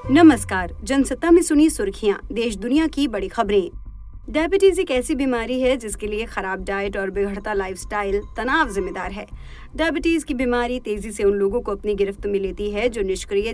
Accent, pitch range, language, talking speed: native, 200-290 Hz, Hindi, 175 wpm